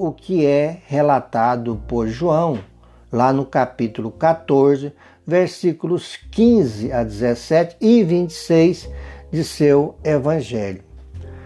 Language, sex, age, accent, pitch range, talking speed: Portuguese, male, 60-79, Brazilian, 120-175 Hz, 100 wpm